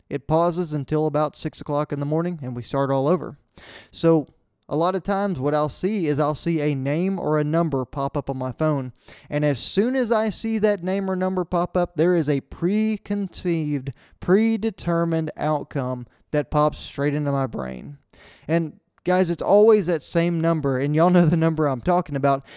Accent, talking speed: American, 195 wpm